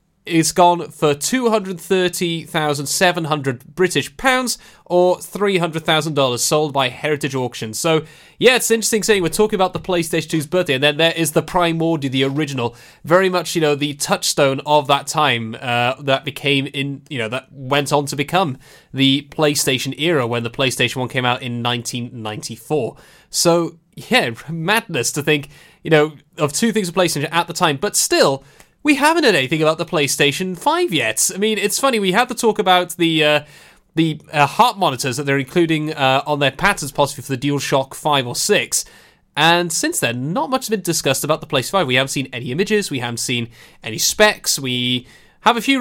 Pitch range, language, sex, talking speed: 140-180 Hz, English, male, 190 wpm